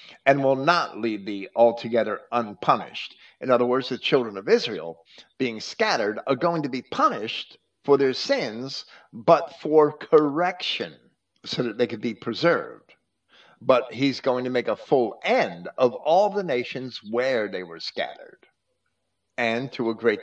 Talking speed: 155 wpm